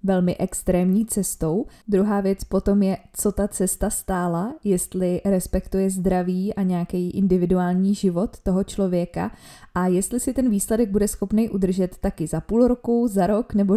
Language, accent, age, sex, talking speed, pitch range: Czech, native, 20-39, female, 155 wpm, 180-200 Hz